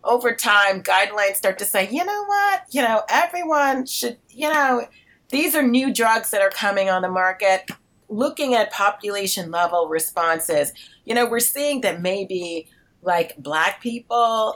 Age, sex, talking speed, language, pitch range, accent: 30-49, female, 160 wpm, English, 160-225 Hz, American